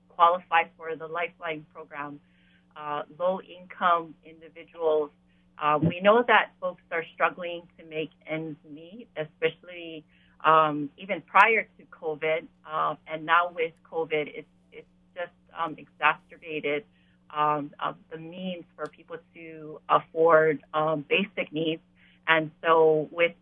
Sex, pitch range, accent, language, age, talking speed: female, 155-185 Hz, American, English, 30-49, 125 wpm